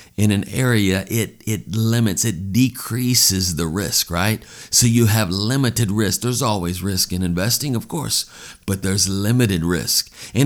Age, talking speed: 50-69, 160 wpm